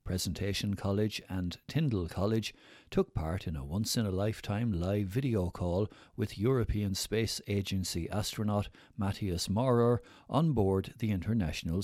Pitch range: 95-115 Hz